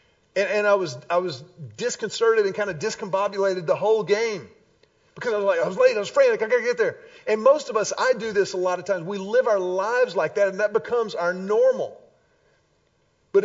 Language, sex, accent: English, male, American